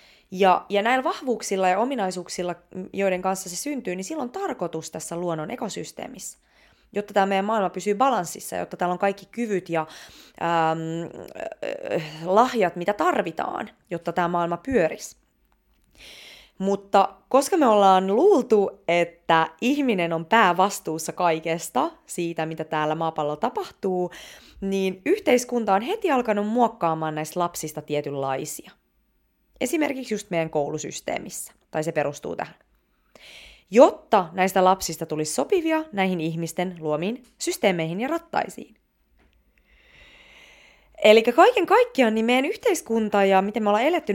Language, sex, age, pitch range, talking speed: Finnish, female, 20-39, 175-250 Hz, 125 wpm